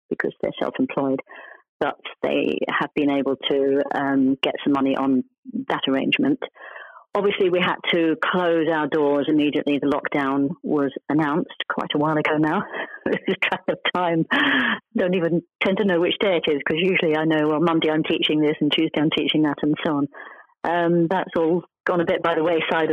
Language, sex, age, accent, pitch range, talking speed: English, female, 40-59, British, 145-180 Hz, 190 wpm